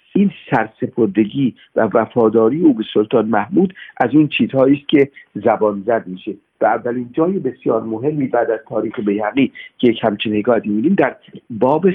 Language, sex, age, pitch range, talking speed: Persian, male, 50-69, 115-155 Hz, 155 wpm